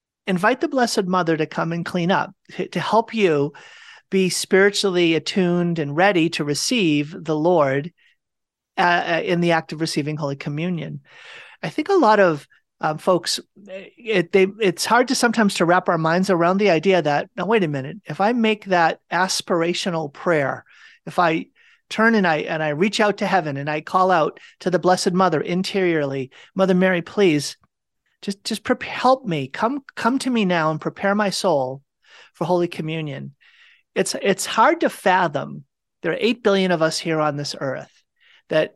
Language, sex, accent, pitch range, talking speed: English, male, American, 160-205 Hz, 175 wpm